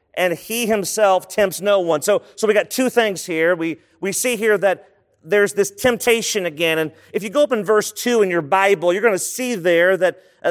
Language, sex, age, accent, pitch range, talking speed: English, male, 40-59, American, 185-230 Hz, 230 wpm